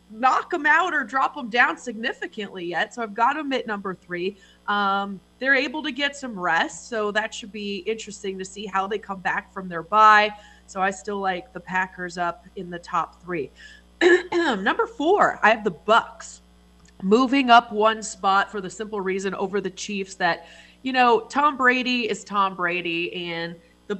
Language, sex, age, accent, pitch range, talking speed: English, female, 30-49, American, 185-250 Hz, 190 wpm